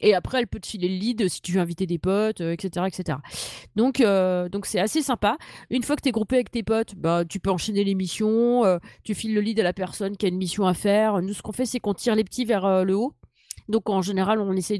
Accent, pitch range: French, 185-225 Hz